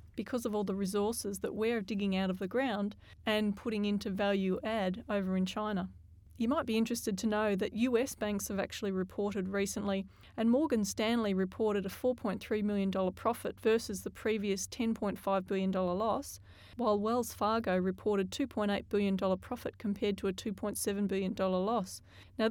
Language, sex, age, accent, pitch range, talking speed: English, female, 30-49, Australian, 195-225 Hz, 165 wpm